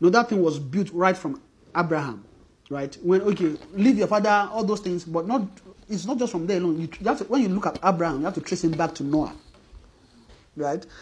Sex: male